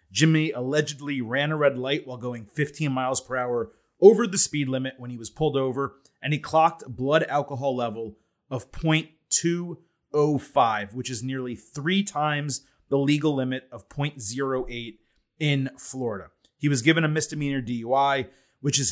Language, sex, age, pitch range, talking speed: English, male, 30-49, 125-155 Hz, 160 wpm